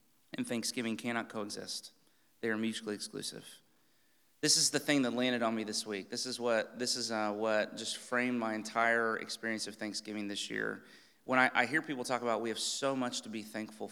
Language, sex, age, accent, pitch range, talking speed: English, male, 30-49, American, 110-145 Hz, 205 wpm